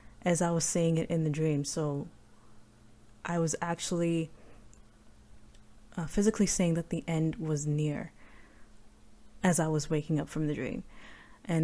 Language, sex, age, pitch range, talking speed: English, female, 20-39, 145-175 Hz, 150 wpm